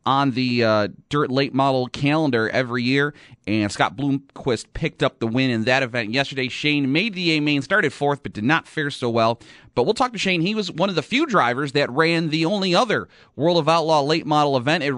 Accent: American